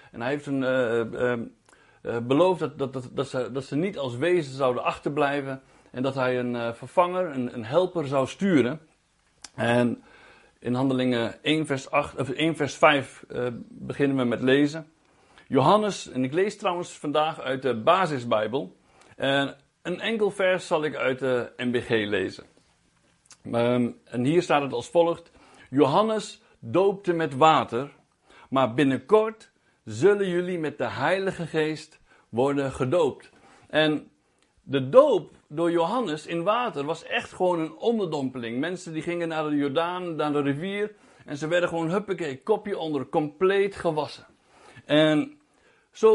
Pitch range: 135-185 Hz